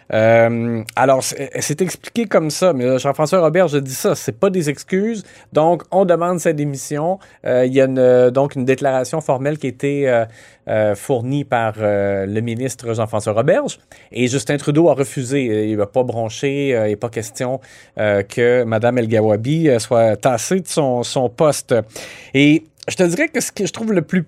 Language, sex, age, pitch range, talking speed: French, male, 30-49, 125-165 Hz, 195 wpm